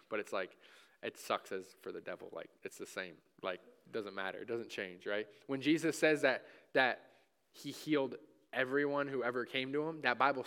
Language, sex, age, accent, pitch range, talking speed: English, male, 20-39, American, 135-165 Hz, 205 wpm